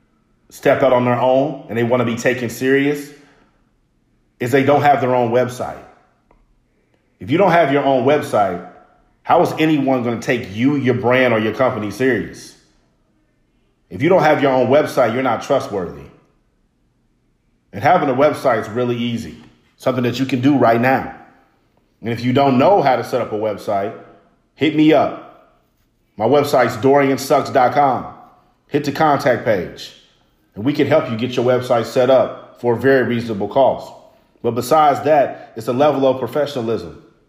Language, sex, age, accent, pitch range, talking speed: English, male, 40-59, American, 120-145 Hz, 170 wpm